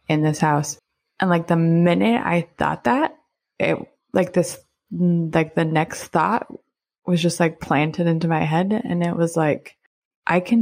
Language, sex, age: English, female, 20-39